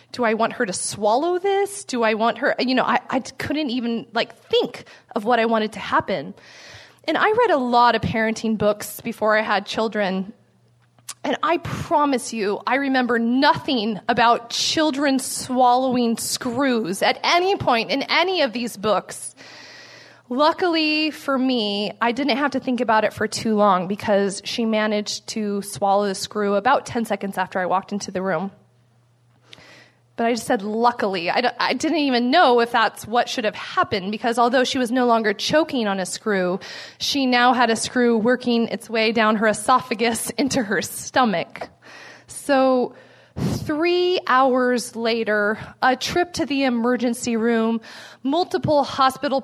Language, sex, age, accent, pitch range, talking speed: English, female, 20-39, American, 215-270 Hz, 165 wpm